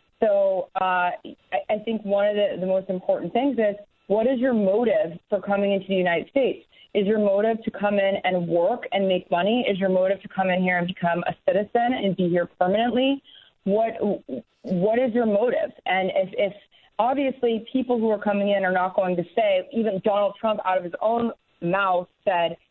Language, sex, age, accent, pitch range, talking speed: English, female, 30-49, American, 190-235 Hz, 205 wpm